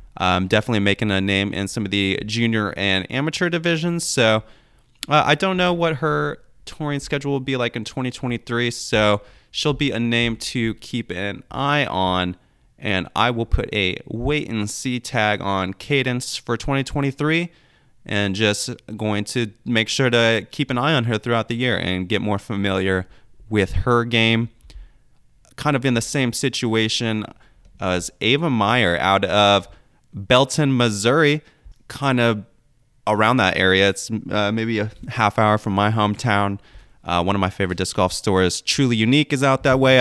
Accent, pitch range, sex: American, 100-125 Hz, male